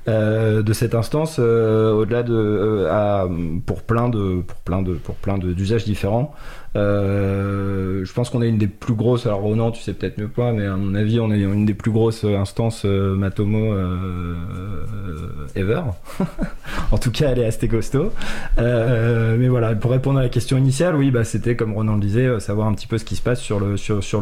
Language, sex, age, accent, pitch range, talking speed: French, male, 20-39, French, 105-125 Hz, 205 wpm